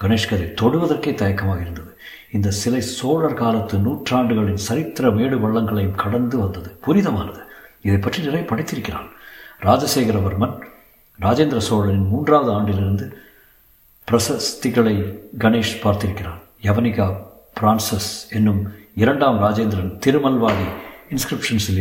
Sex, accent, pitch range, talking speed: male, native, 105-125 Hz, 90 wpm